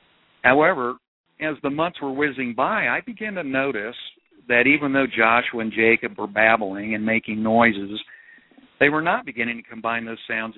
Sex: male